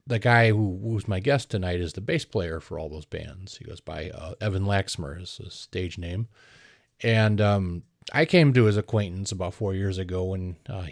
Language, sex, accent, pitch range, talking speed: English, male, American, 90-115 Hz, 205 wpm